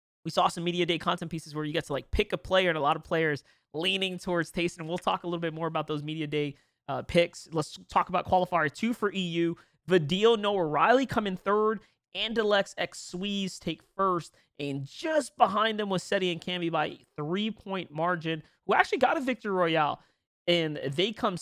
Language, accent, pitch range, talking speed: English, American, 160-200 Hz, 205 wpm